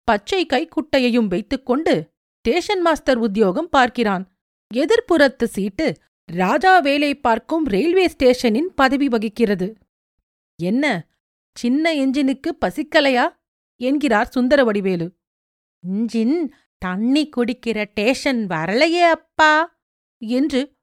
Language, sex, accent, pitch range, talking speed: Tamil, female, native, 215-295 Hz, 85 wpm